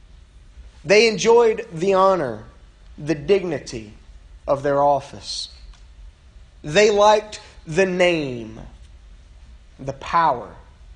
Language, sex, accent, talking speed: English, male, American, 80 wpm